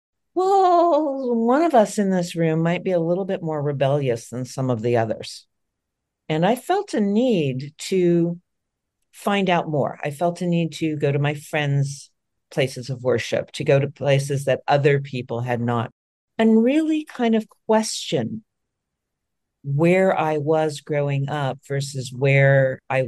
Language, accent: English, American